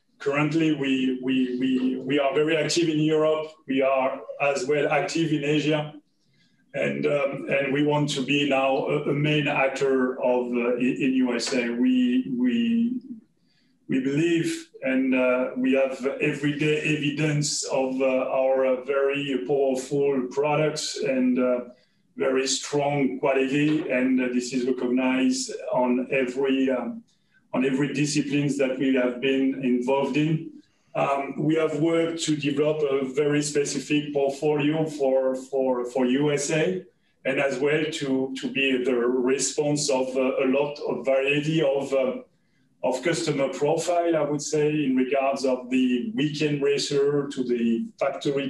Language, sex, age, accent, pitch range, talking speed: English, male, 30-49, French, 130-150 Hz, 145 wpm